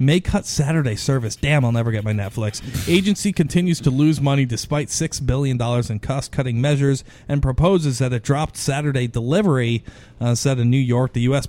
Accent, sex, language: American, male, English